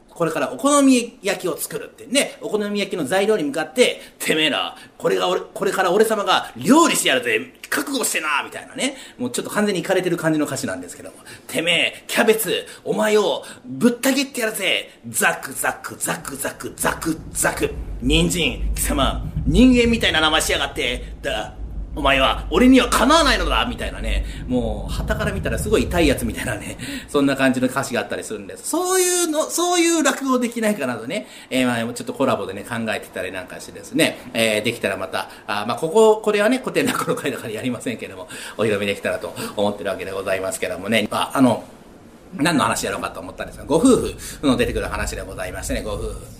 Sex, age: male, 40-59